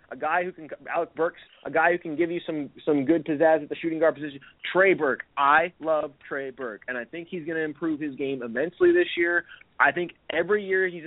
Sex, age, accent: male, 30-49, American